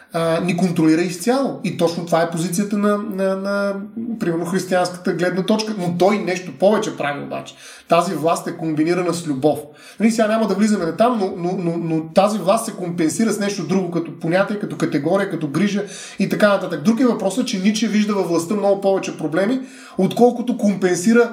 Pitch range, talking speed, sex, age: 175-220 Hz, 190 wpm, male, 30-49